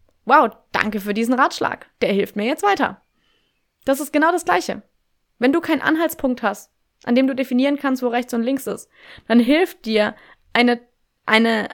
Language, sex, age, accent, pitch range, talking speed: German, female, 20-39, German, 220-270 Hz, 180 wpm